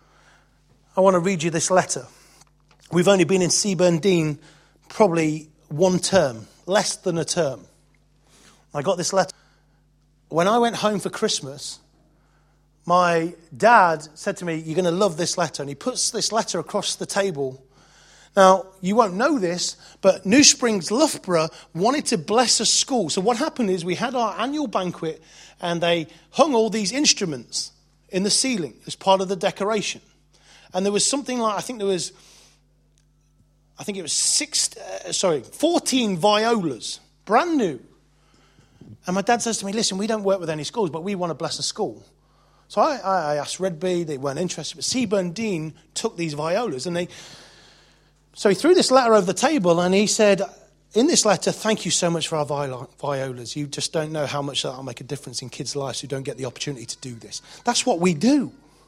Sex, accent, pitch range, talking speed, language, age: male, British, 155-215 Hz, 195 wpm, English, 30-49